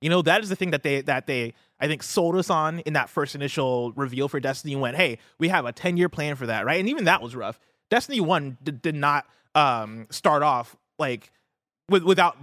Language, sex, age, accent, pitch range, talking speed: English, male, 20-39, American, 120-155 Hz, 235 wpm